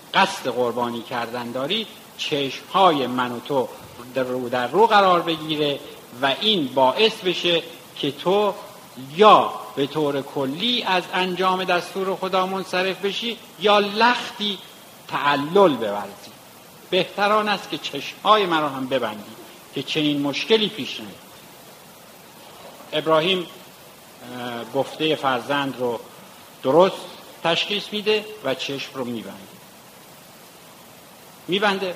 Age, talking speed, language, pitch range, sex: 50-69, 105 wpm, Persian, 125-185 Hz, male